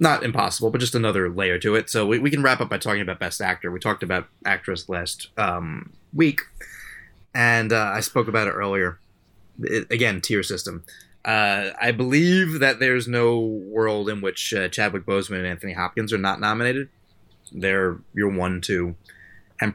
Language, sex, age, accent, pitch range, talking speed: English, male, 20-39, American, 95-120 Hz, 180 wpm